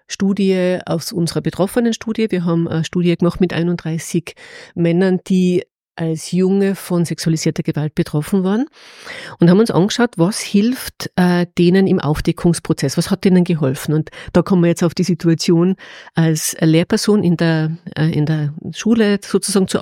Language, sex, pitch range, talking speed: German, female, 165-200 Hz, 150 wpm